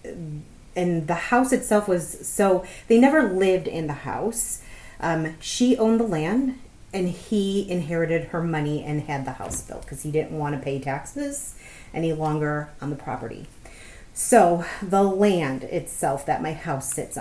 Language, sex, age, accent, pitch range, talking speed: English, female, 30-49, American, 145-175 Hz, 165 wpm